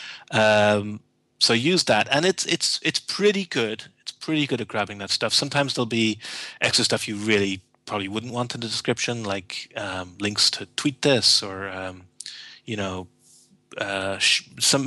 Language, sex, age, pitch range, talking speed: English, male, 30-49, 105-125 Hz, 170 wpm